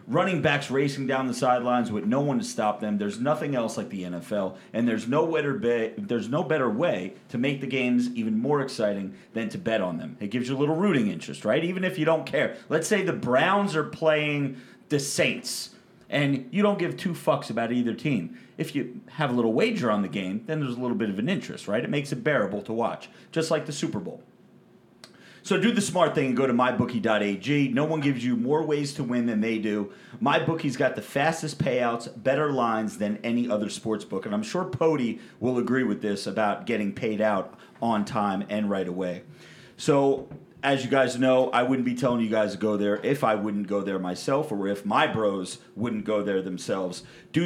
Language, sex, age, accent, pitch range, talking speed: English, male, 30-49, American, 110-155 Hz, 215 wpm